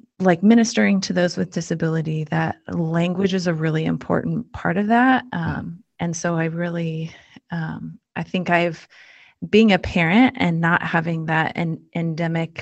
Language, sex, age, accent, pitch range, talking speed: English, female, 30-49, American, 160-185 Hz, 155 wpm